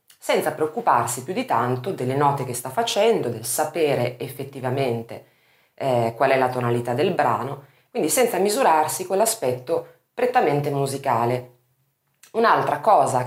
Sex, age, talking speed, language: female, 30-49, 125 wpm, Italian